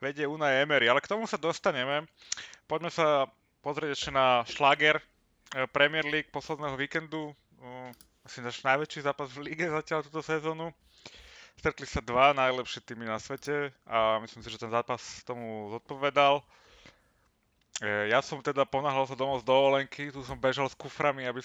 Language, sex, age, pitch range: Slovak, male, 20-39, 110-145 Hz